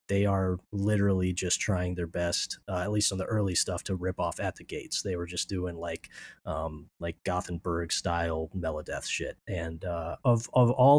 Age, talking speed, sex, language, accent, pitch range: 30-49, 195 wpm, male, English, American, 90-110 Hz